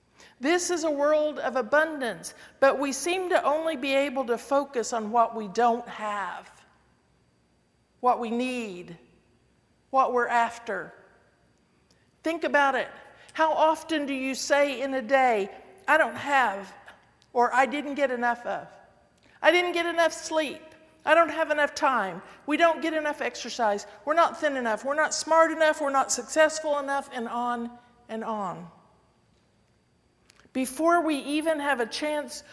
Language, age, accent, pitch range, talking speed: English, 50-69, American, 220-285 Hz, 155 wpm